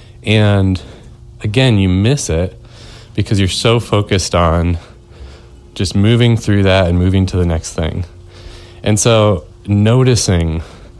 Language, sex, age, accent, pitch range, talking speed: English, male, 30-49, American, 90-115 Hz, 125 wpm